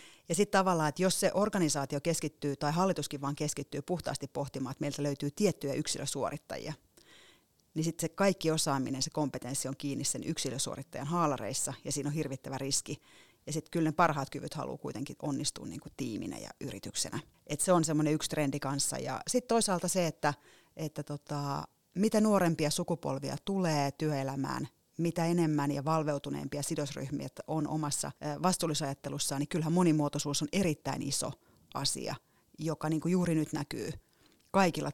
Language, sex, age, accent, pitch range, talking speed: Finnish, female, 30-49, native, 145-165 Hz, 155 wpm